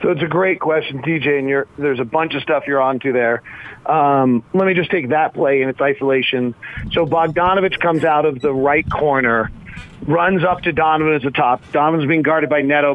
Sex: male